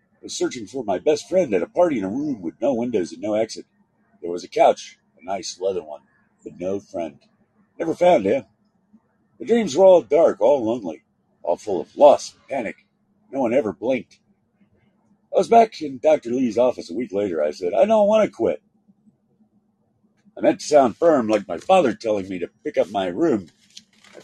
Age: 50-69